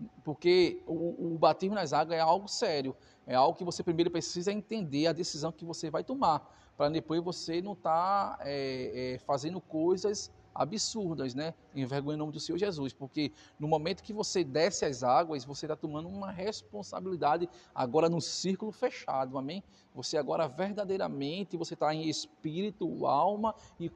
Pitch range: 150-200 Hz